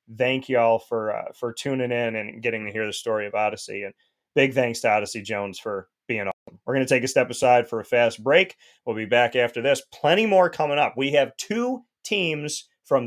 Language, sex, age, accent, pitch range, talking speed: English, male, 30-49, American, 115-135 Hz, 230 wpm